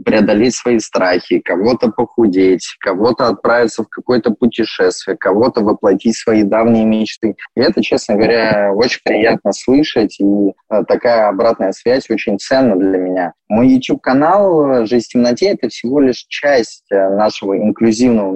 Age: 20-39